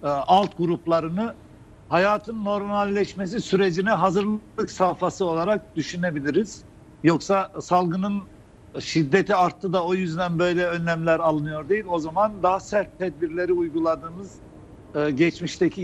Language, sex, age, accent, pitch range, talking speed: Turkish, male, 60-79, native, 160-200 Hz, 100 wpm